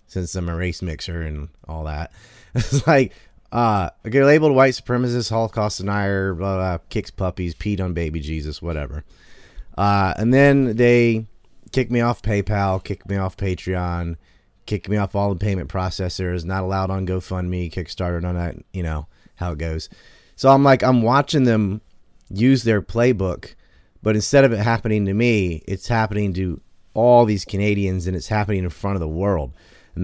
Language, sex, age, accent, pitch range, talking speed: English, male, 30-49, American, 90-115 Hz, 175 wpm